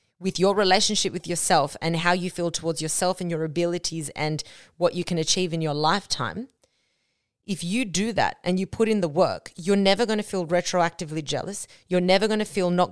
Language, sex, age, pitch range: English, female, 30-49, 165-210 Hz